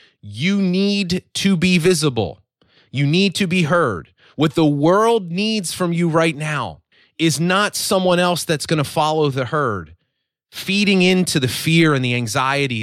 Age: 30-49